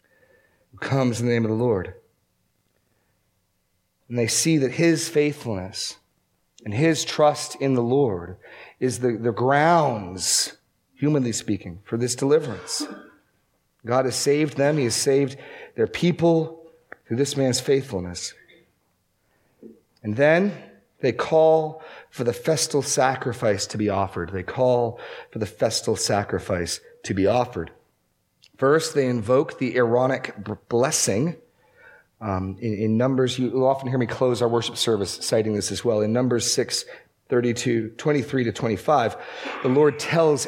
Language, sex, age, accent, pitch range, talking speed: English, male, 40-59, American, 110-150 Hz, 140 wpm